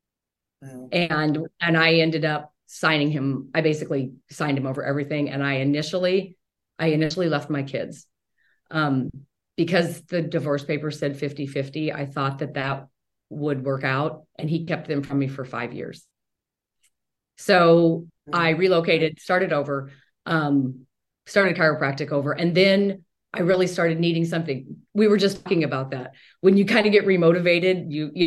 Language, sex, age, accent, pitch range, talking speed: English, female, 30-49, American, 145-170 Hz, 160 wpm